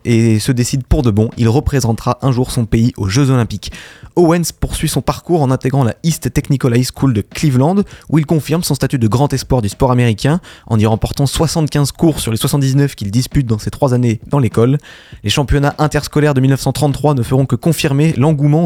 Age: 20-39